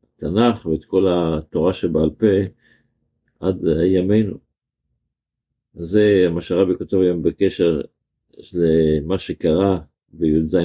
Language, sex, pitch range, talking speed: Hebrew, male, 85-110 Hz, 95 wpm